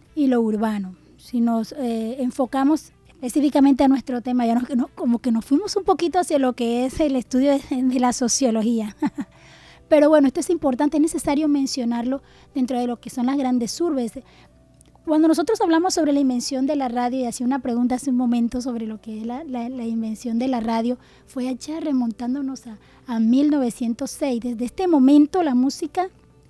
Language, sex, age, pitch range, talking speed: Spanish, female, 20-39, 235-275 Hz, 190 wpm